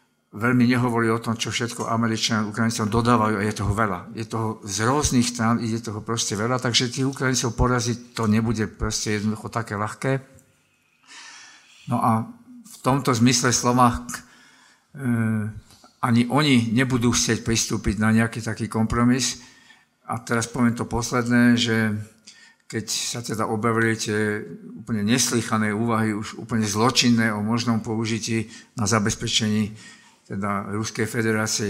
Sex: male